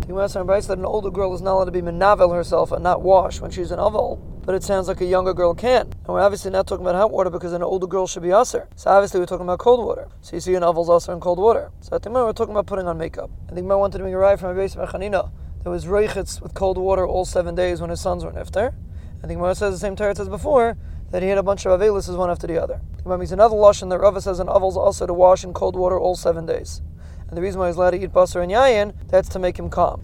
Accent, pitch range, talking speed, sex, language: American, 180-200 Hz, 310 wpm, male, English